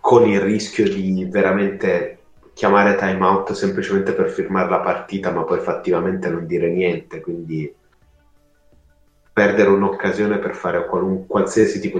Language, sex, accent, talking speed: Italian, male, native, 135 wpm